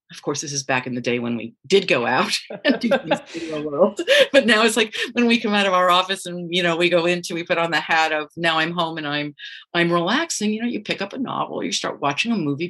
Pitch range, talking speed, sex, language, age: 155-200 Hz, 260 wpm, female, English, 50-69